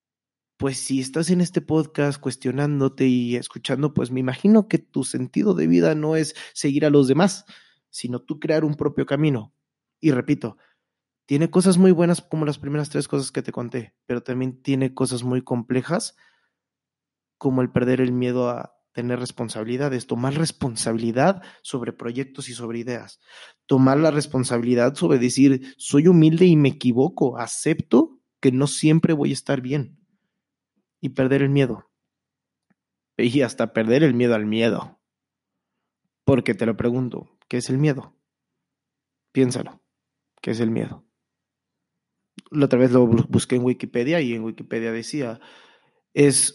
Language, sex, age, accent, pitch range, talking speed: Spanish, male, 20-39, Mexican, 125-150 Hz, 150 wpm